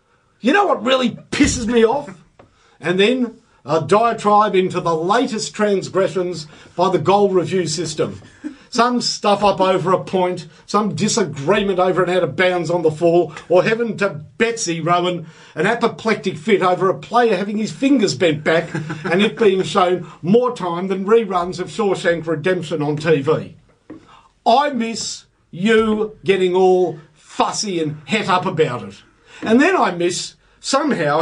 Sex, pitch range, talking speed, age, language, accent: male, 165-220 Hz, 155 wpm, 50-69, English, Australian